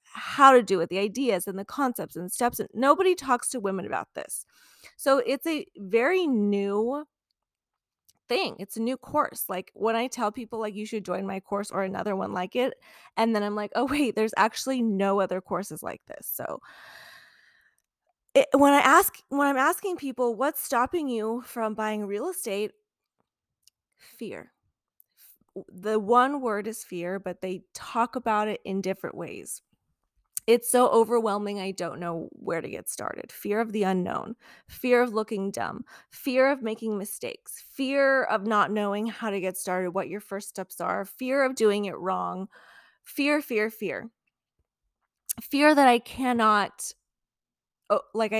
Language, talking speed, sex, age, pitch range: English, 165 wpm, female, 20-39, 200-255 Hz